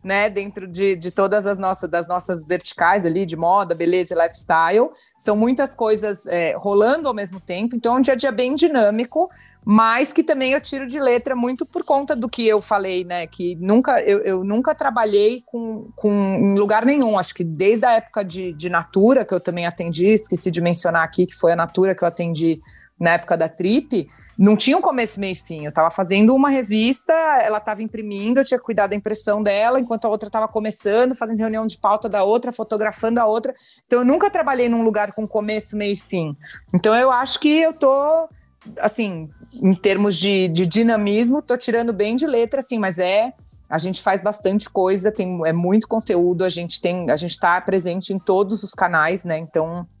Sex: female